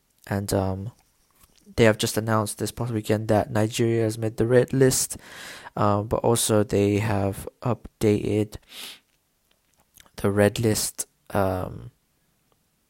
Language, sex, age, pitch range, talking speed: English, male, 20-39, 105-115 Hz, 120 wpm